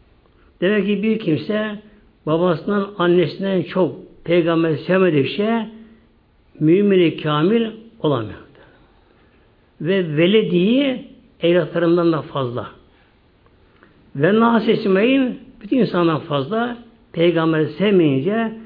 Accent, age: native, 60-79